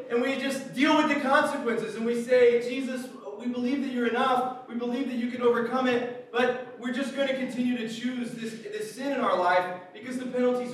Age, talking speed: 30-49, 225 wpm